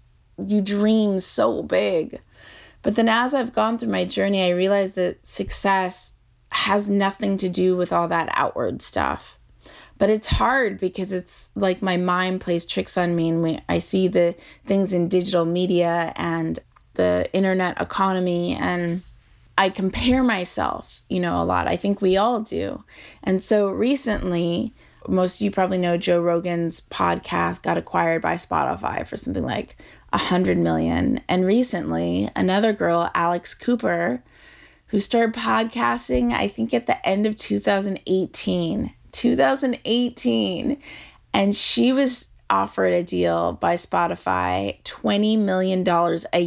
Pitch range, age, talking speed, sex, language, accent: 165-200 Hz, 20-39, 145 wpm, female, English, American